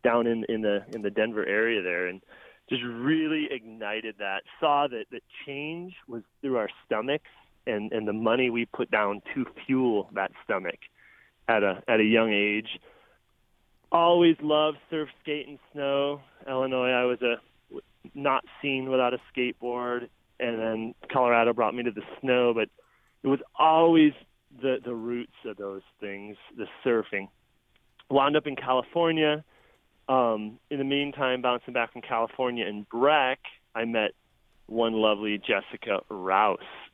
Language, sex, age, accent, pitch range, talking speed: English, male, 30-49, American, 110-140 Hz, 155 wpm